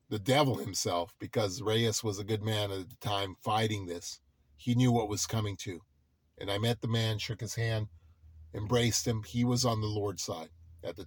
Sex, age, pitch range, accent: male, 40-59, 95-125 Hz, American